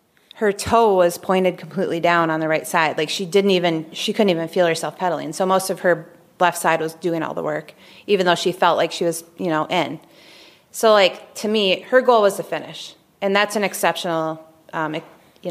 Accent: American